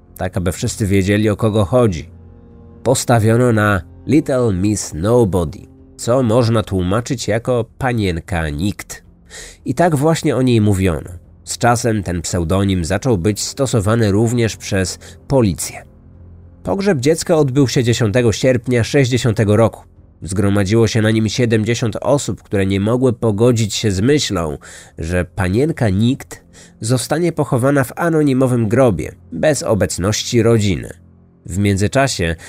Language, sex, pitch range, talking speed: Polish, male, 95-125 Hz, 125 wpm